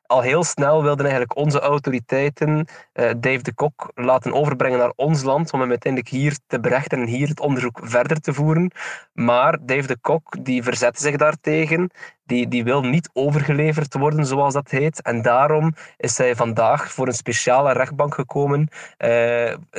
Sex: male